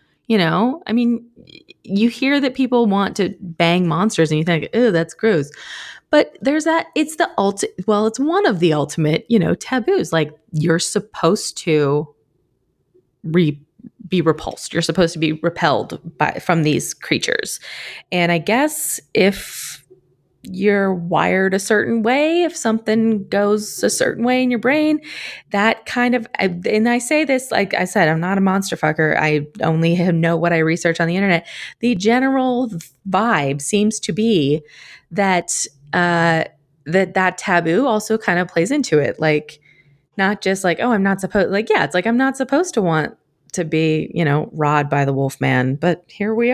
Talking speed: 175 wpm